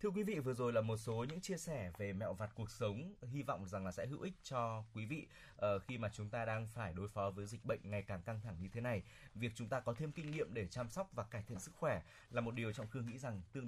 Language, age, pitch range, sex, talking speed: Vietnamese, 20-39, 110-150 Hz, male, 295 wpm